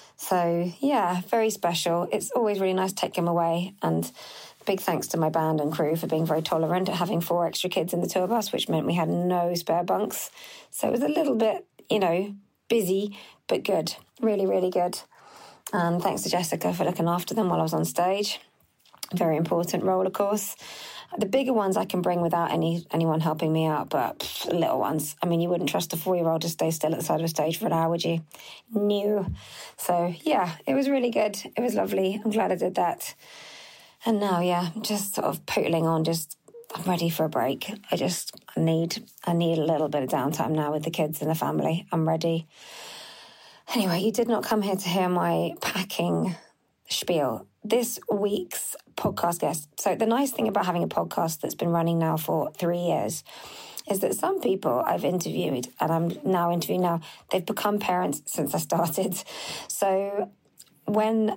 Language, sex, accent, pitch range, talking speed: English, female, British, 165-205 Hz, 205 wpm